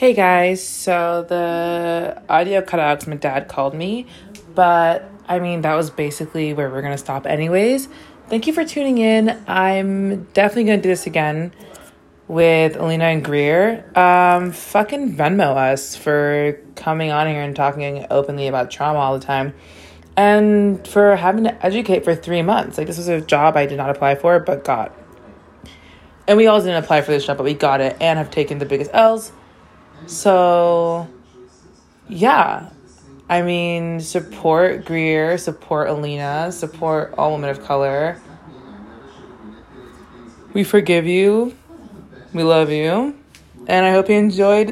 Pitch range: 150-205 Hz